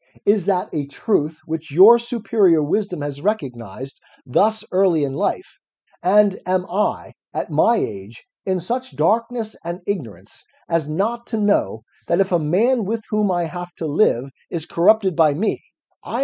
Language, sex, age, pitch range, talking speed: English, male, 50-69, 165-215 Hz, 165 wpm